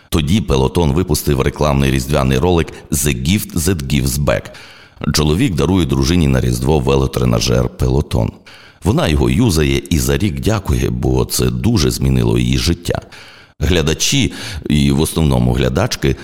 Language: Ukrainian